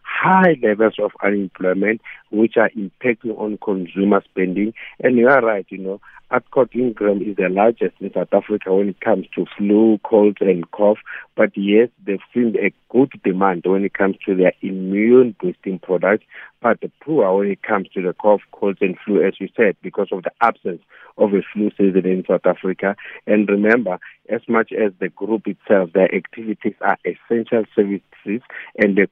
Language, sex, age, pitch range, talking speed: English, male, 50-69, 95-110 Hz, 180 wpm